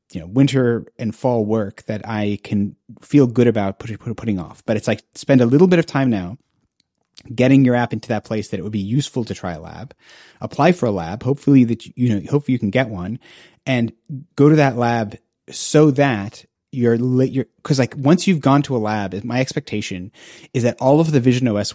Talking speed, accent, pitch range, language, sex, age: 220 wpm, American, 105-130 Hz, English, male, 30-49